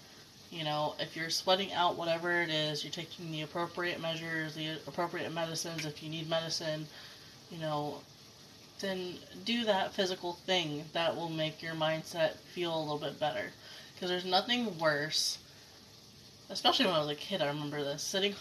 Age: 20-39